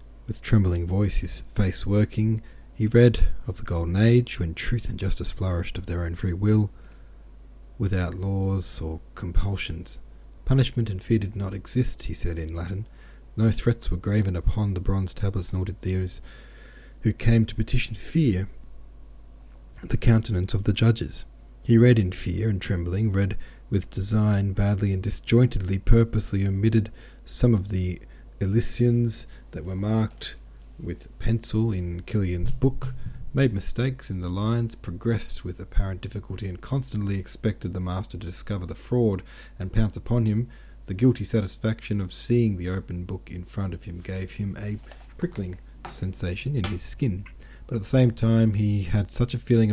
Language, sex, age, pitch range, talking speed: English, male, 40-59, 90-115 Hz, 165 wpm